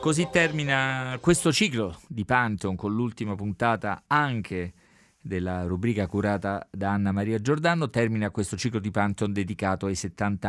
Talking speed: 145 wpm